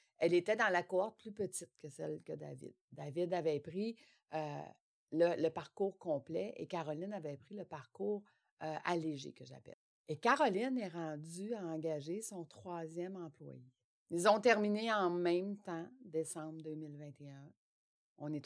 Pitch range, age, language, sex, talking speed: 160-210 Hz, 60-79, French, female, 150 wpm